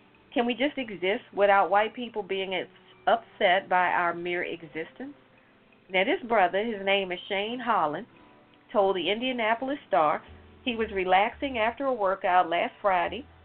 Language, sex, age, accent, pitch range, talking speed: English, female, 40-59, American, 180-250 Hz, 145 wpm